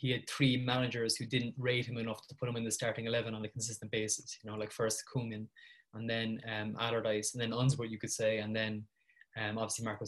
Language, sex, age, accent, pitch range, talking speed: English, male, 20-39, Irish, 115-135 Hz, 240 wpm